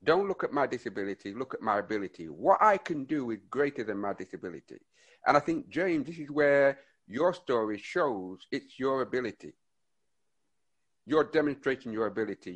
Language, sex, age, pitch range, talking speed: English, male, 60-79, 120-175 Hz, 165 wpm